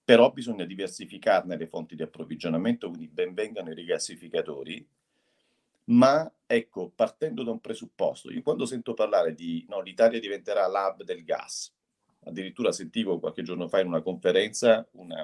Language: Italian